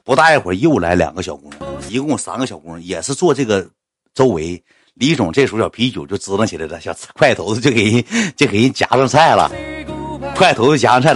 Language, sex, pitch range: Chinese, male, 120-195 Hz